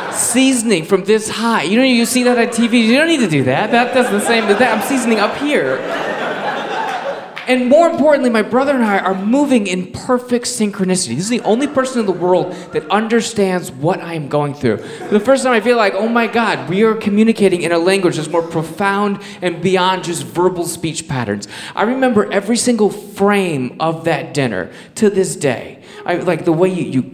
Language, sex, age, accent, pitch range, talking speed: English, male, 20-39, American, 175-235 Hz, 210 wpm